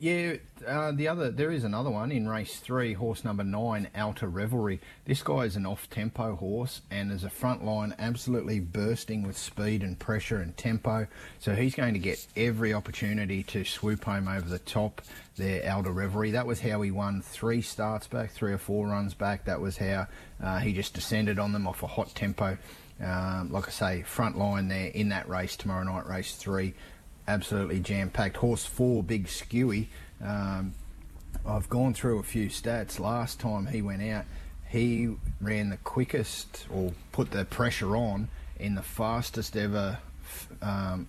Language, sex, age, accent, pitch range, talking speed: English, male, 30-49, Australian, 95-110 Hz, 180 wpm